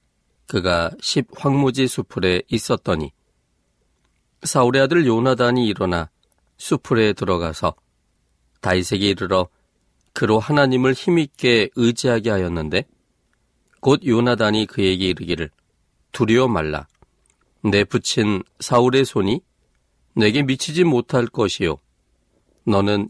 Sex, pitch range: male, 90-130 Hz